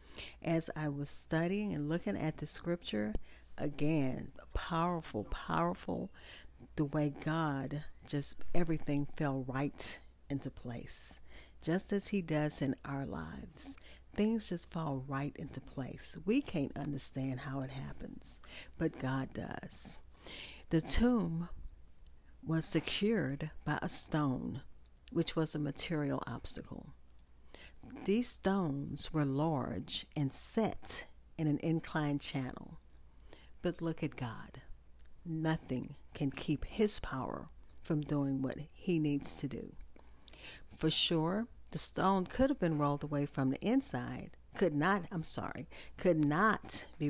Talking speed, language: 125 wpm, English